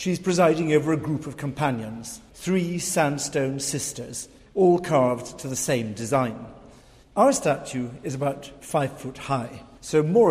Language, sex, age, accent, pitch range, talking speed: English, male, 50-69, British, 135-170 Hz, 145 wpm